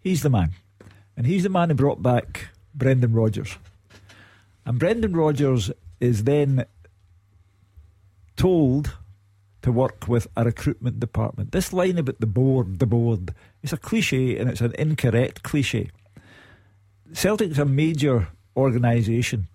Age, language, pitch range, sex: 50-69, English, 105-140 Hz, male